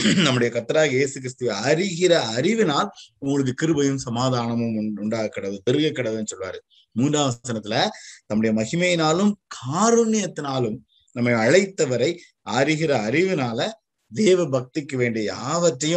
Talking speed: 95 wpm